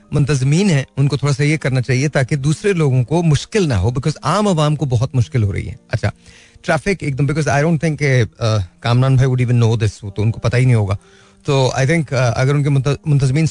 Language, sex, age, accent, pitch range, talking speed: Hindi, male, 30-49, native, 125-165 Hz, 180 wpm